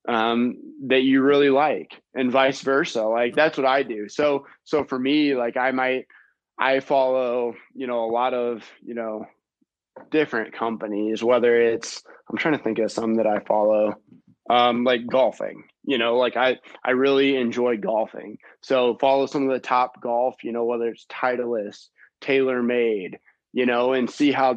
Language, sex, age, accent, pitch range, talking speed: English, male, 20-39, American, 120-135 Hz, 175 wpm